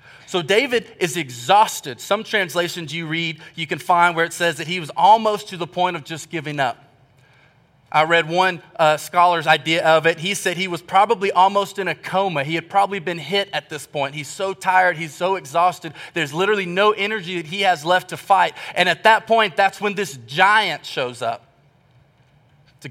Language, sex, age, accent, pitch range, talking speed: English, male, 30-49, American, 155-215 Hz, 200 wpm